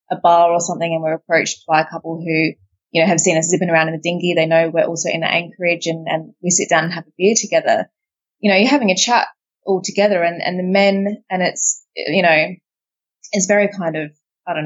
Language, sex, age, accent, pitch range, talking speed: English, female, 20-39, Australian, 165-190 Hz, 245 wpm